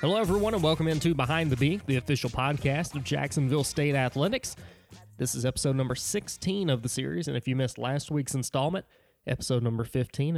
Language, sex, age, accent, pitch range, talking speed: English, male, 20-39, American, 125-150 Hz, 190 wpm